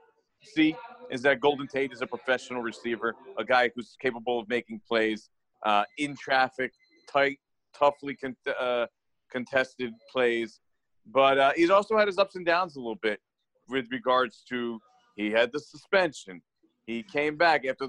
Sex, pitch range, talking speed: male, 115-140 Hz, 160 wpm